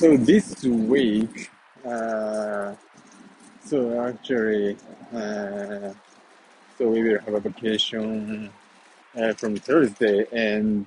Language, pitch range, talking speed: English, 100-115 Hz, 95 wpm